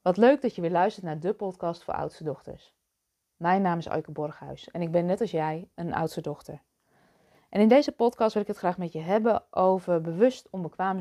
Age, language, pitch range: 20-39, Dutch, 160-215 Hz